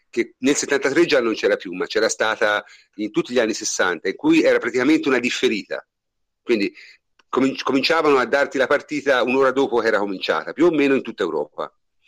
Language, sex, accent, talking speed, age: Italian, male, native, 190 wpm, 50-69